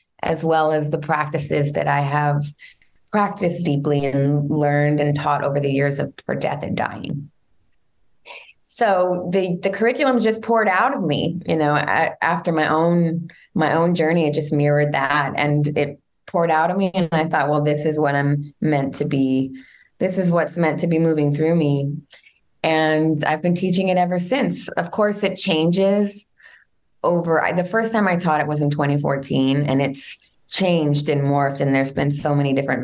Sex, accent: female, American